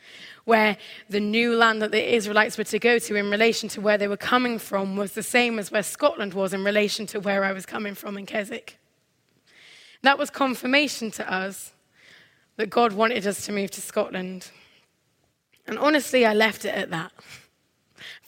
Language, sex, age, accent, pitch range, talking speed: English, female, 20-39, British, 200-240 Hz, 185 wpm